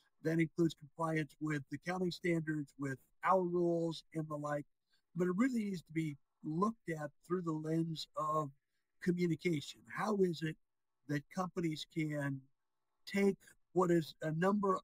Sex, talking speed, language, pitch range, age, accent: male, 150 wpm, English, 150-180 Hz, 60-79, American